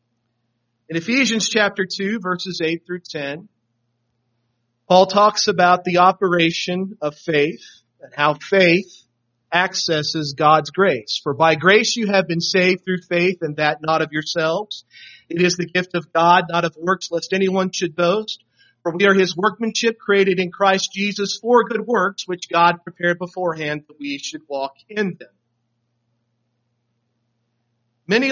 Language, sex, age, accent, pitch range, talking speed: English, male, 40-59, American, 120-185 Hz, 150 wpm